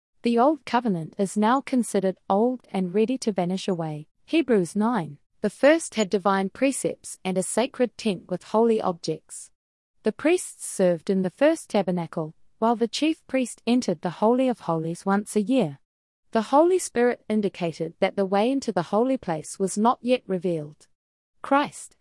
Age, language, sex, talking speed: 30-49, English, female, 165 wpm